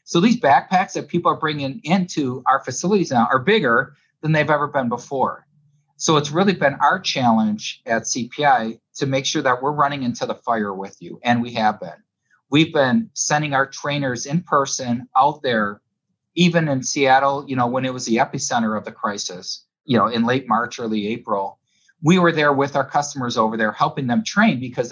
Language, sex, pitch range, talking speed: English, male, 120-160 Hz, 195 wpm